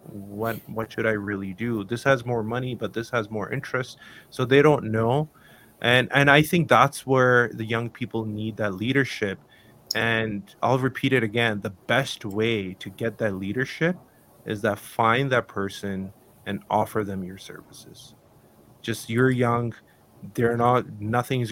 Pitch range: 110-135 Hz